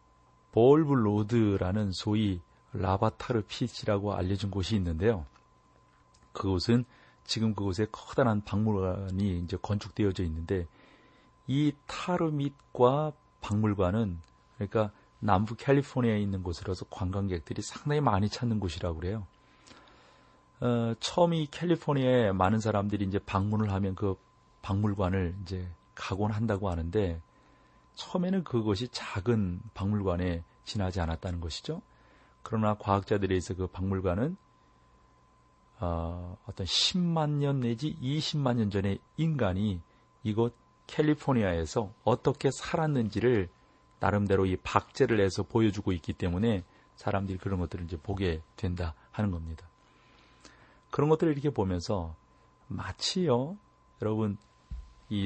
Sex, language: male, Korean